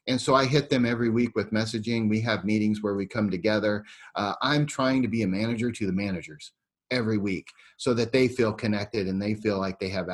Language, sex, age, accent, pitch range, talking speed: English, male, 30-49, American, 100-120 Hz, 230 wpm